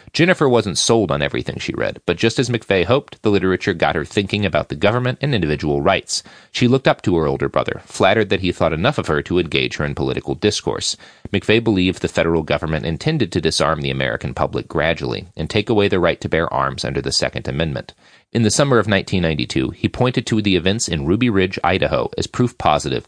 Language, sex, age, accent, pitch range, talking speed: English, male, 30-49, American, 85-120 Hz, 220 wpm